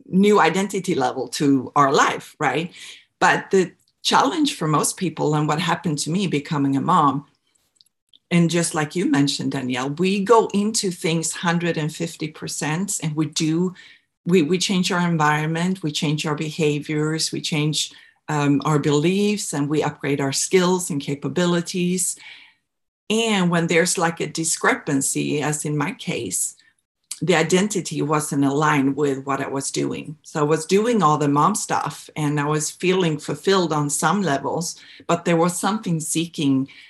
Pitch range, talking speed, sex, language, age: 150-180 Hz, 155 wpm, female, English, 50-69